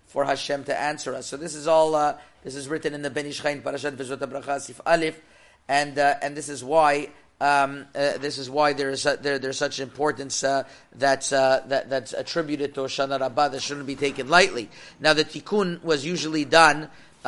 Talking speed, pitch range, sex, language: 200 wpm, 135-155 Hz, male, English